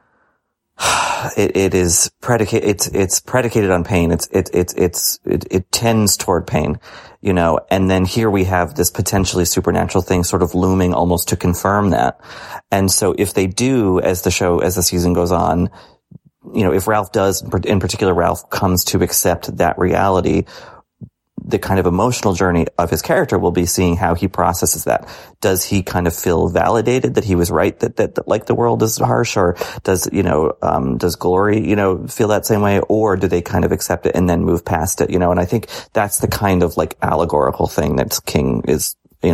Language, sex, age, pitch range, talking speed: English, male, 30-49, 90-105 Hz, 205 wpm